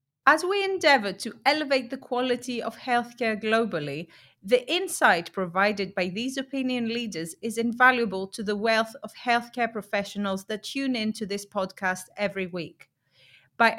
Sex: female